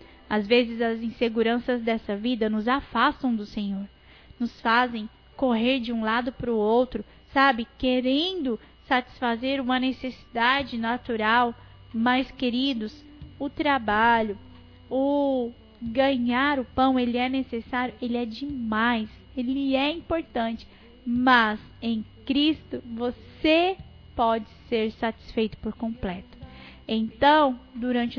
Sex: female